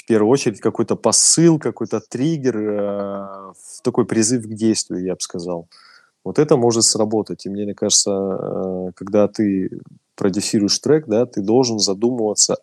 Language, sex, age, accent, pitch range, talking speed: Russian, male, 20-39, native, 95-115 Hz, 140 wpm